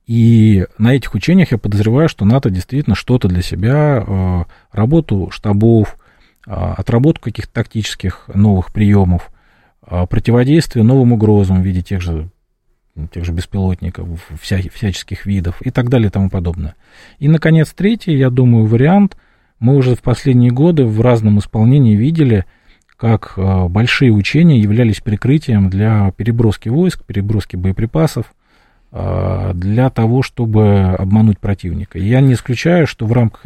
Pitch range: 95-125 Hz